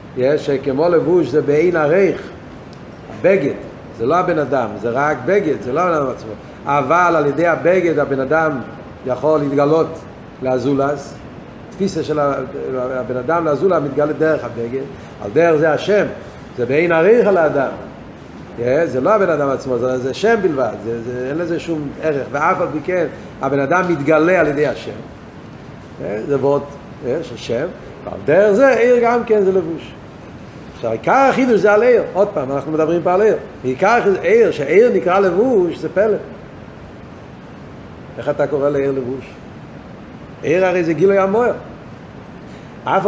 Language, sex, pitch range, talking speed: Hebrew, male, 130-175 Hz, 155 wpm